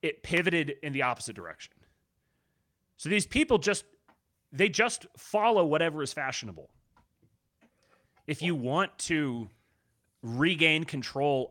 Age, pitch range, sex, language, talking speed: 30-49, 120-170 Hz, male, English, 115 wpm